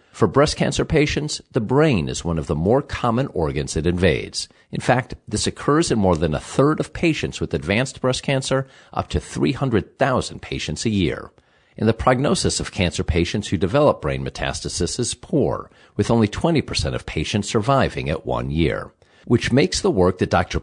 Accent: American